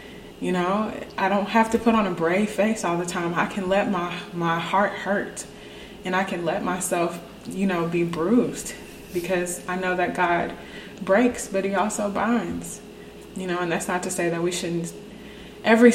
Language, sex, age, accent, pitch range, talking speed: English, female, 20-39, American, 165-190 Hz, 190 wpm